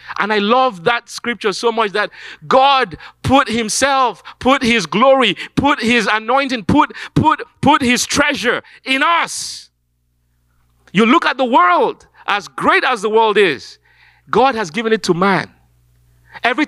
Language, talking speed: English, 150 wpm